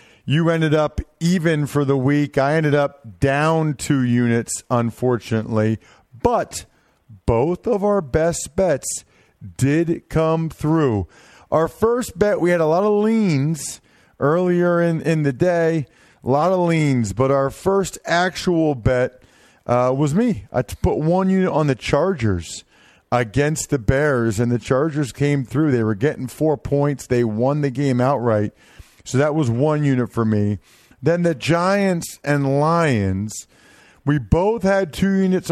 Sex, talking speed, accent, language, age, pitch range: male, 155 wpm, American, English, 40-59, 120-165 Hz